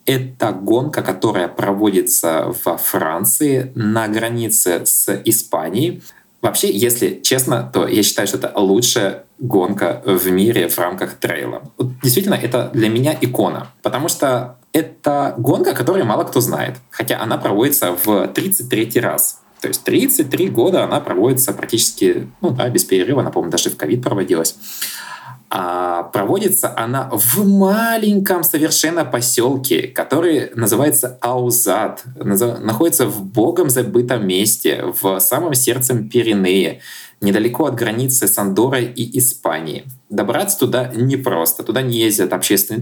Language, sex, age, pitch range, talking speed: Russian, male, 20-39, 105-150 Hz, 130 wpm